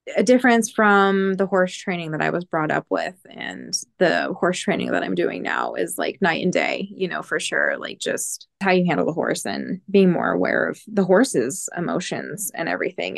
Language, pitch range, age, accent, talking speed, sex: English, 165-190 Hz, 20-39, American, 210 wpm, female